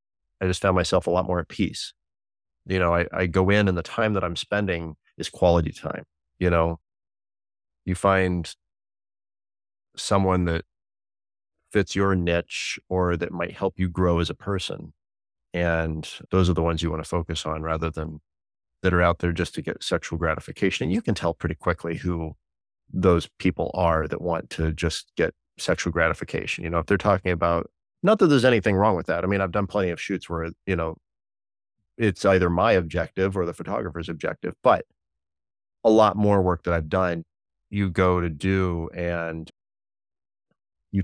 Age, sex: 30-49, male